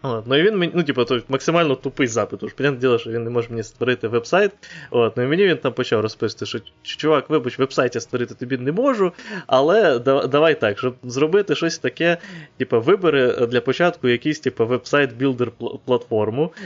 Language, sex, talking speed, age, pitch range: Ukrainian, male, 175 wpm, 20-39, 115-150 Hz